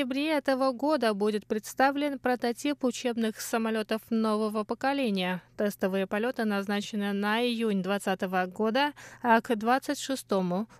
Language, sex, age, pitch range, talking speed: Russian, female, 20-39, 200-245 Hz, 115 wpm